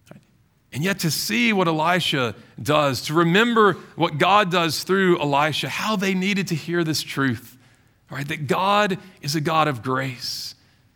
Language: English